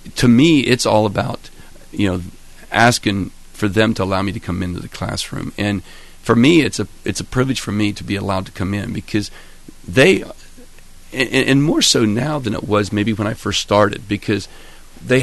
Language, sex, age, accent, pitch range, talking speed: English, male, 40-59, American, 100-115 Hz, 200 wpm